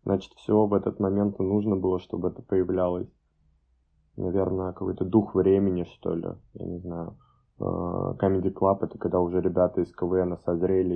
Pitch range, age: 85-95 Hz, 20-39